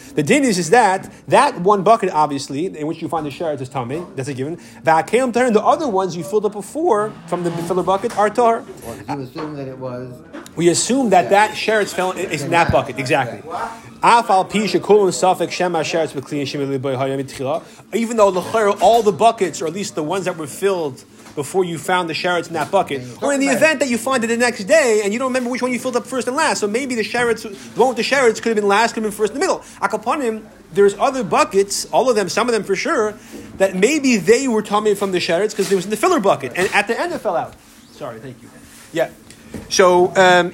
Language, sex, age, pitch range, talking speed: English, male, 30-49, 165-220 Hz, 215 wpm